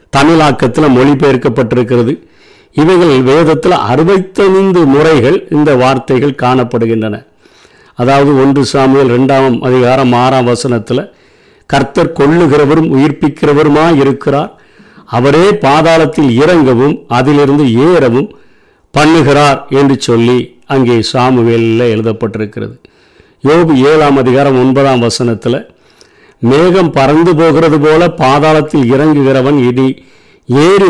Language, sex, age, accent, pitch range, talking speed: Tamil, male, 50-69, native, 130-155 Hz, 85 wpm